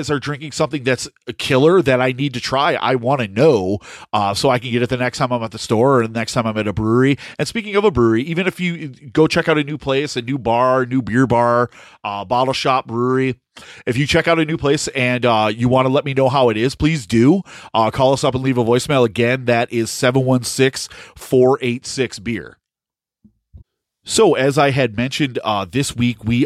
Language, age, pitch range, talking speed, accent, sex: English, 30-49, 115-140 Hz, 225 wpm, American, male